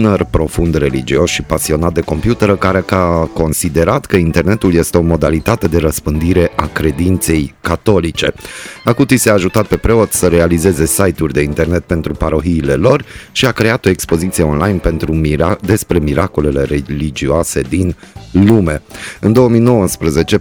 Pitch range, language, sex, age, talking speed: 80-100 Hz, Romanian, male, 30-49, 140 wpm